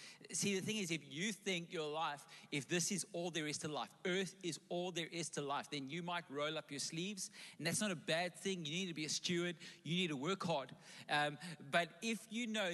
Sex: male